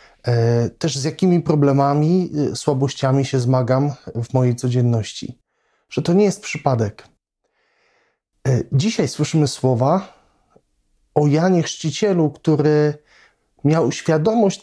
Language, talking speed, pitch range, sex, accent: Polish, 100 wpm, 130-180 Hz, male, native